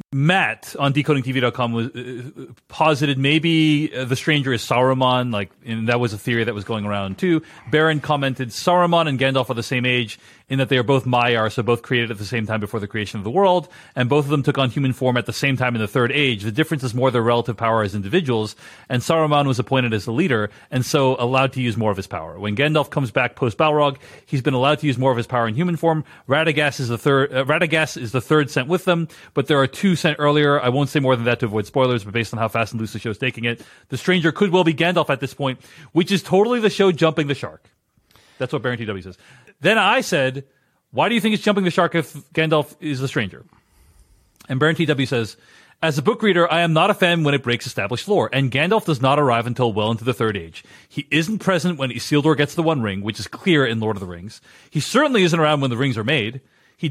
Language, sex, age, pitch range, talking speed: English, male, 30-49, 120-160 Hz, 255 wpm